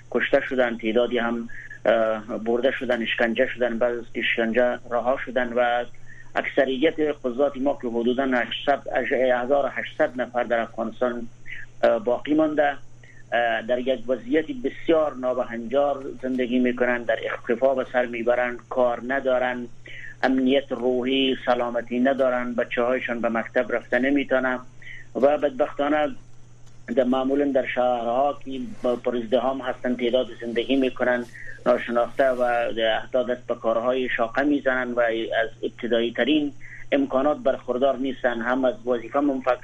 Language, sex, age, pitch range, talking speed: Persian, male, 50-69, 120-135 Hz, 120 wpm